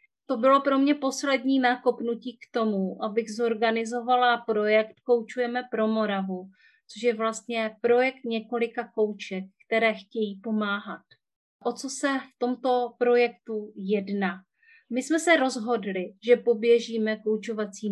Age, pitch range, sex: 30-49, 215-250 Hz, female